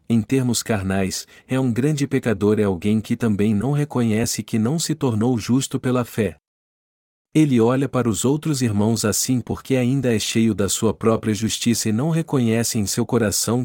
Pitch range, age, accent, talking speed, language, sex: 105-130 Hz, 50-69, Brazilian, 180 wpm, Portuguese, male